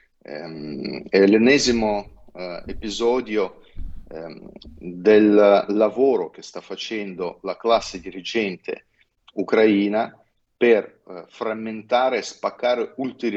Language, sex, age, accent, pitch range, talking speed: Italian, male, 30-49, native, 95-110 Hz, 85 wpm